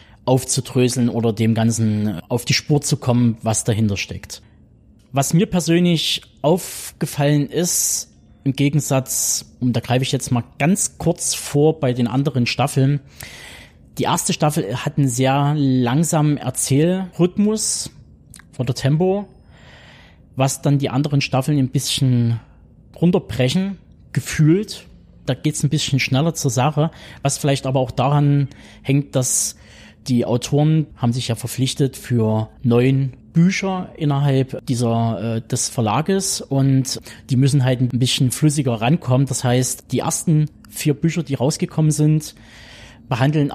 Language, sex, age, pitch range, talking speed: German, male, 20-39, 120-150 Hz, 135 wpm